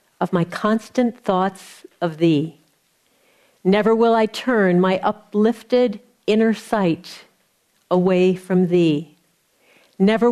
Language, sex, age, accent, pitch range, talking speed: English, female, 50-69, American, 175-230 Hz, 105 wpm